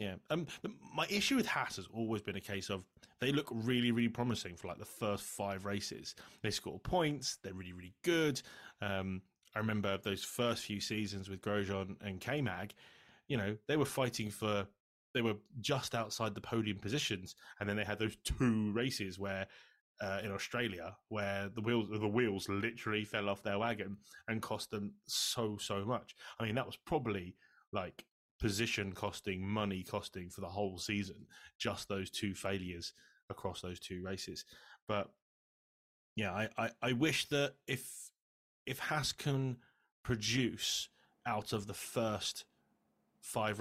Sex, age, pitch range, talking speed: male, 20-39, 100-120 Hz, 165 wpm